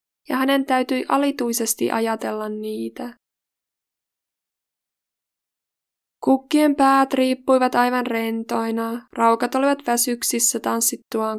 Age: 20-39